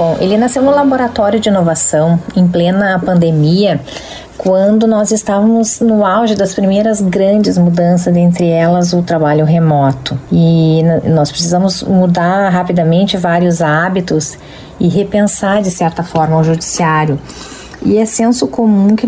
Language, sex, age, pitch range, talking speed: Portuguese, female, 30-49, 165-205 Hz, 135 wpm